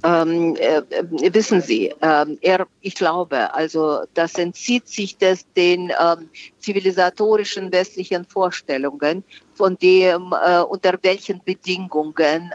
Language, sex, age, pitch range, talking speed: German, female, 50-69, 155-190 Hz, 115 wpm